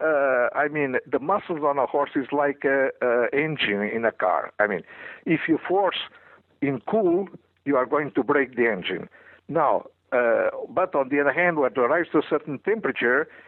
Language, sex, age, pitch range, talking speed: English, male, 60-79, 125-150 Hz, 195 wpm